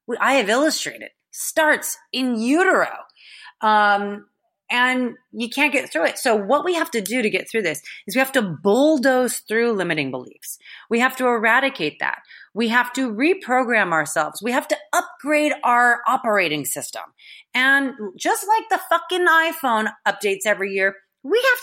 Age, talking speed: 30-49, 165 wpm